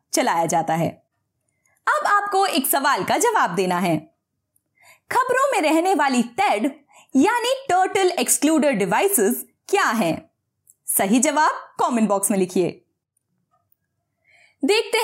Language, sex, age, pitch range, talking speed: Hindi, female, 20-39, 235-390 Hz, 115 wpm